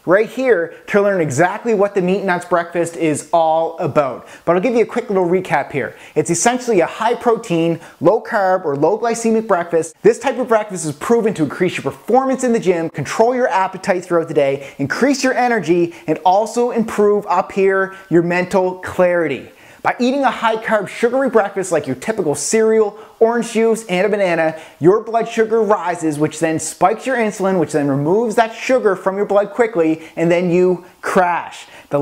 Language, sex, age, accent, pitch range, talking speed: English, male, 30-49, American, 165-225 Hz, 195 wpm